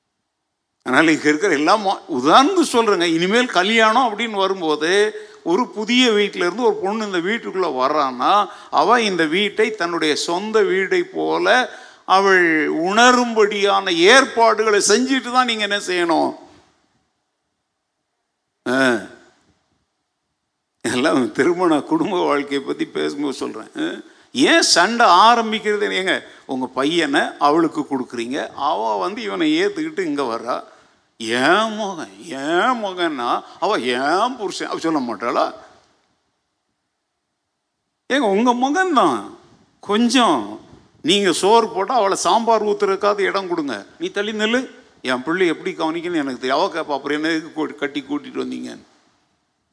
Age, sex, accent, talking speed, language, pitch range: 50-69, male, native, 100 wpm, Tamil, 165-260 Hz